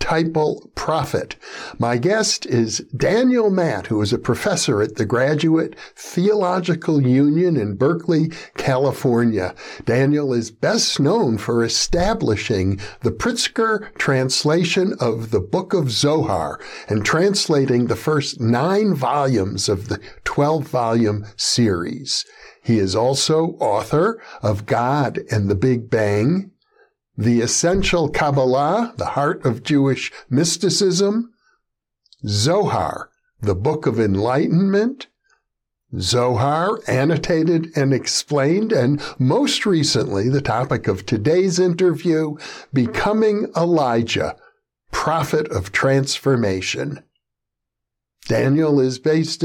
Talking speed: 105 wpm